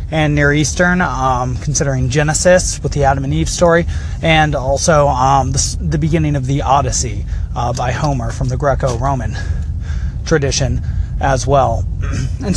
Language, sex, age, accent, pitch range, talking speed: English, male, 30-49, American, 125-170 Hz, 150 wpm